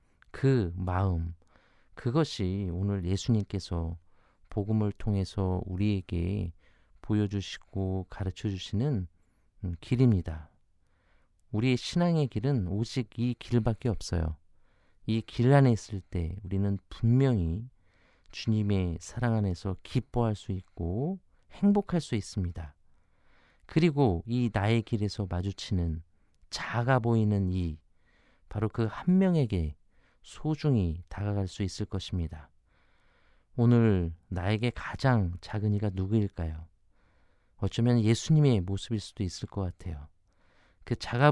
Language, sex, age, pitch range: Korean, male, 40-59, 90-115 Hz